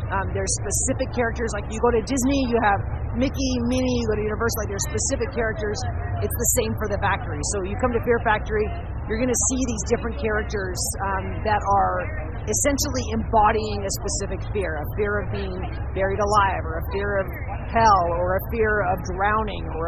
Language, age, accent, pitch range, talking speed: English, 40-59, American, 95-110 Hz, 195 wpm